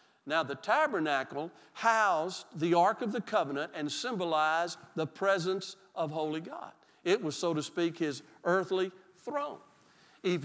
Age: 50-69